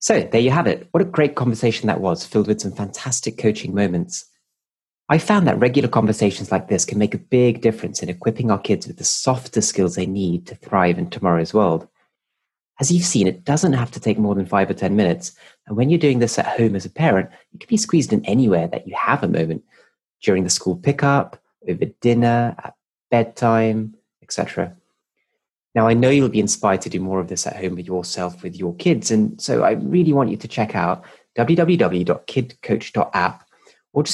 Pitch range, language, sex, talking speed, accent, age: 95-140 Hz, English, male, 205 wpm, British, 30-49